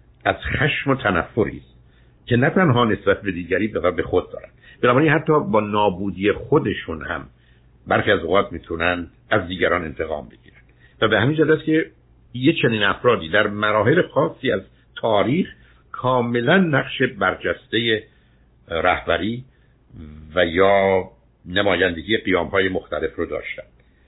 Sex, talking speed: male, 130 wpm